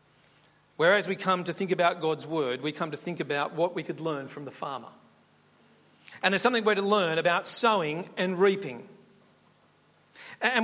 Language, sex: English, male